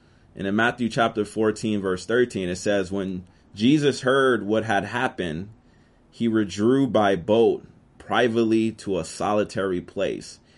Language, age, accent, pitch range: English, 30-49, American, 95-125 Hz